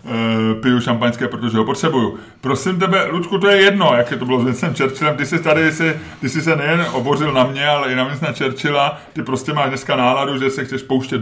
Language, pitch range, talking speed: Czech, 115-140 Hz, 235 wpm